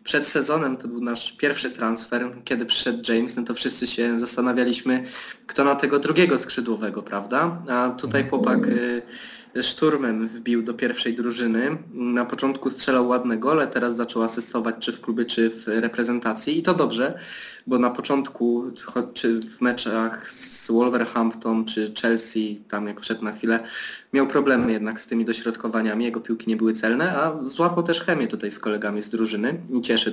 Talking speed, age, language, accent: 165 wpm, 20-39, Polish, native